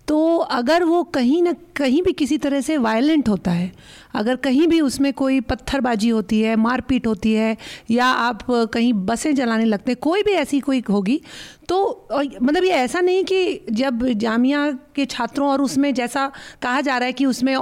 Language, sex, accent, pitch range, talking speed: Hindi, female, native, 240-320 Hz, 190 wpm